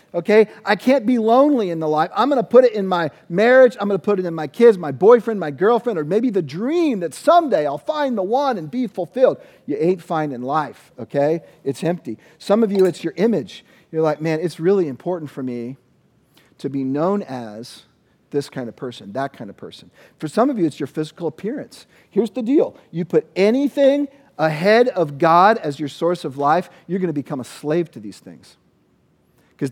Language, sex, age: English, male, 40-59